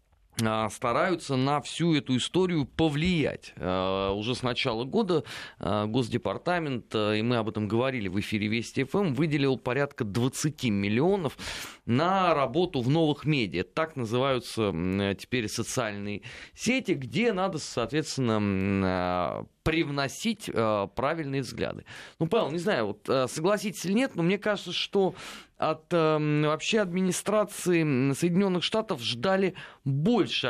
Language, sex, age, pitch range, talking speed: Russian, male, 20-39, 115-180 Hz, 115 wpm